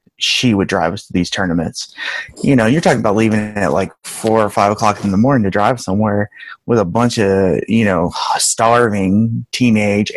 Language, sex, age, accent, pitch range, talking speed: English, male, 30-49, American, 95-110 Hz, 195 wpm